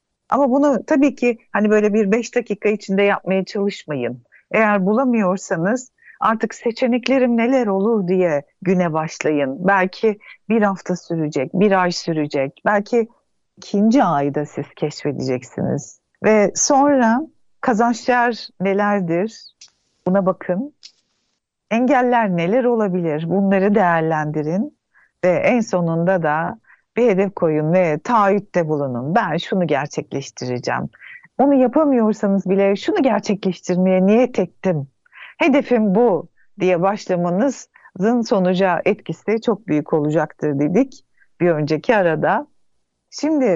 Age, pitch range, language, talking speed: 60-79, 175-240 Hz, Turkish, 105 wpm